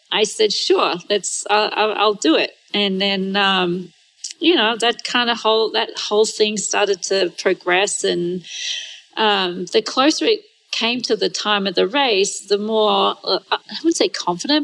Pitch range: 195-280 Hz